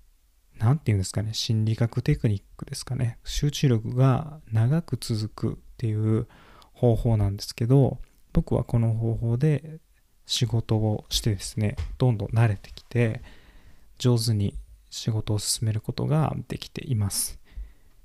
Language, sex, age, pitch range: Japanese, male, 20-39, 105-130 Hz